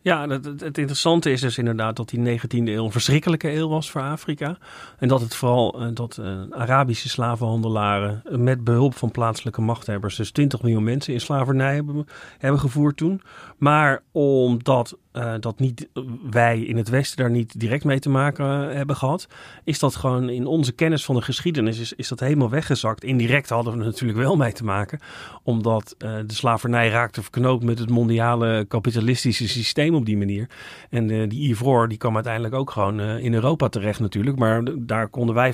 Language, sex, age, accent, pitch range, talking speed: Dutch, male, 40-59, Dutch, 110-135 Hz, 190 wpm